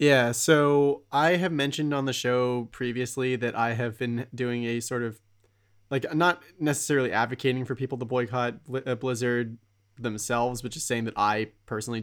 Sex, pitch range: male, 110-135 Hz